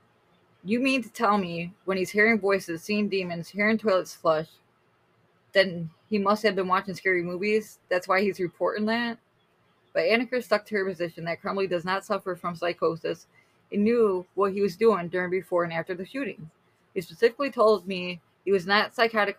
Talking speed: 185 wpm